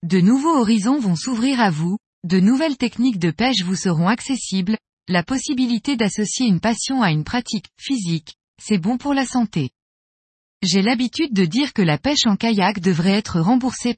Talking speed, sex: 175 wpm, female